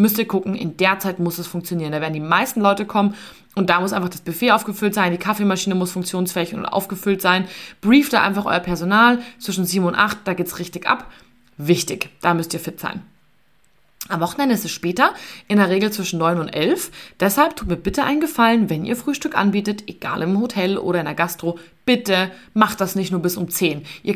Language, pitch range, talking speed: German, 175-235 Hz, 220 wpm